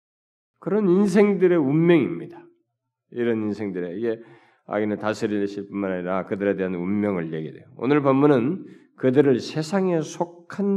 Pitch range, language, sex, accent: 115-175 Hz, Korean, male, native